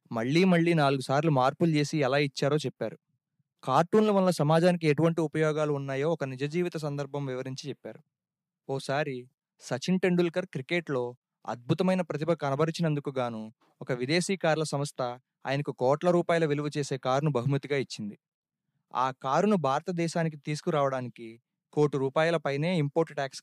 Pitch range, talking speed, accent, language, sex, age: 135-170 Hz, 125 wpm, native, Telugu, male, 20-39